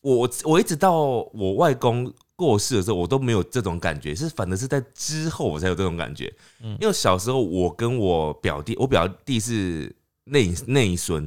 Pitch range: 90-125 Hz